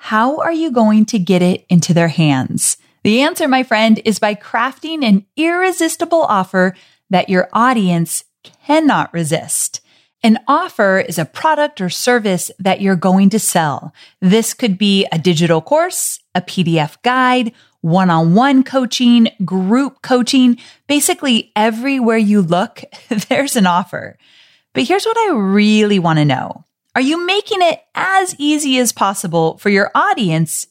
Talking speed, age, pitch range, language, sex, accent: 150 wpm, 30-49, 180-265 Hz, English, female, American